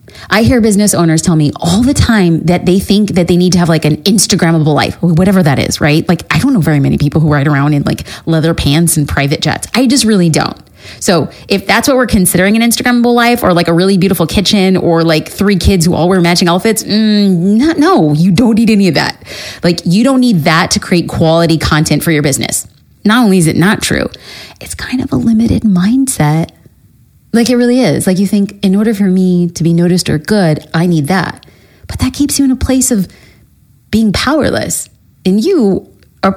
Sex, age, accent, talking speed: female, 30-49, American, 225 wpm